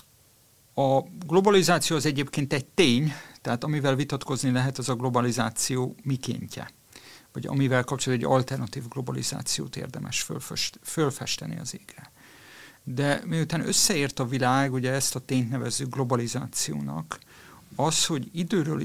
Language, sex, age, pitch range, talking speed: Hungarian, male, 50-69, 125-145 Hz, 125 wpm